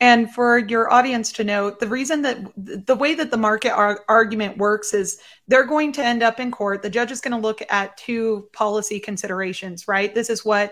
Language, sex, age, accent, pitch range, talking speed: English, female, 30-49, American, 200-235 Hz, 215 wpm